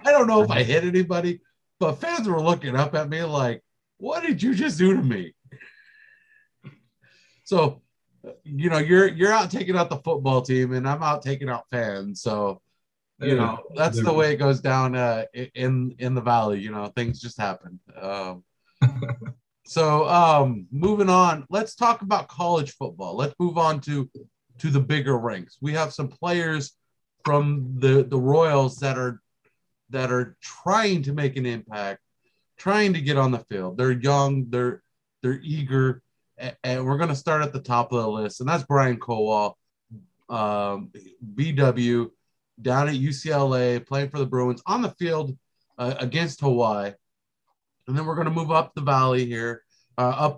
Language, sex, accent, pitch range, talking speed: English, male, American, 125-160 Hz, 175 wpm